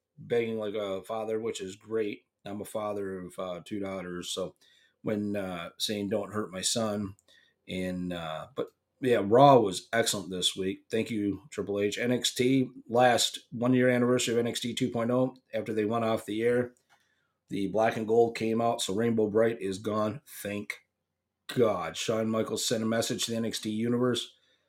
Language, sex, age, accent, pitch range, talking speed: English, male, 40-59, American, 105-125 Hz, 170 wpm